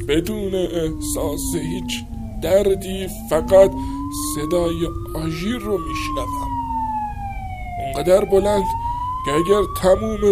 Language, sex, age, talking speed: Persian, male, 60-79, 85 wpm